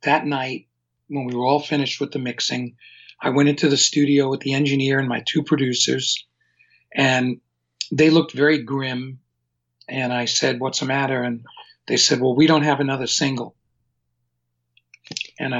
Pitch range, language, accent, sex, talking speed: 120-145 Hz, English, American, male, 165 wpm